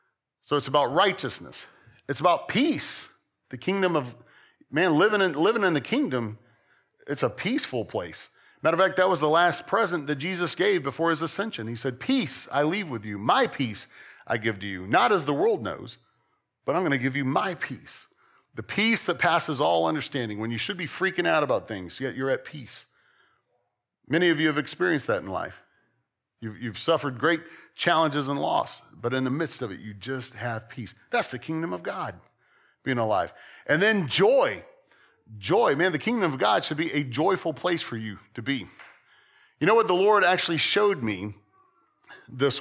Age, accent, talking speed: 40-59, American, 195 wpm